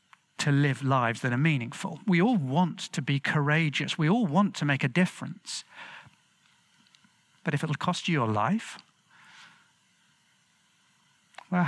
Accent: British